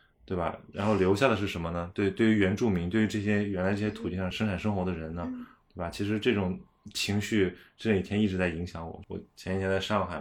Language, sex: Chinese, male